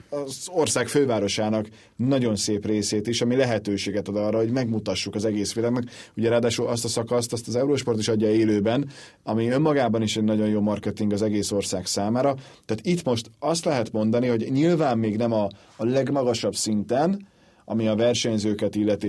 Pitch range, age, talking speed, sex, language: 105-130 Hz, 30-49, 175 wpm, male, Hungarian